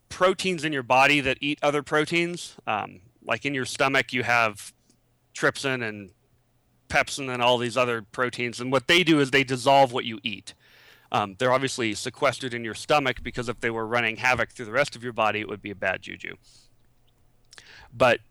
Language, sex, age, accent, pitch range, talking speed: English, male, 30-49, American, 115-140 Hz, 195 wpm